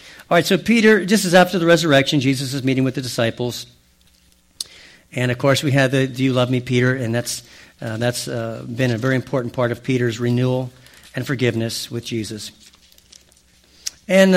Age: 50-69